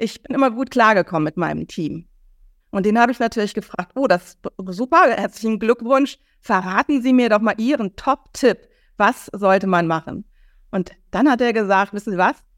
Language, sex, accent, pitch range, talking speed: German, female, German, 190-230 Hz, 185 wpm